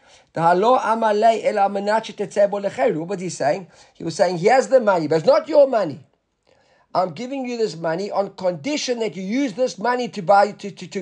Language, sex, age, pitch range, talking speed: English, male, 50-69, 160-220 Hz, 180 wpm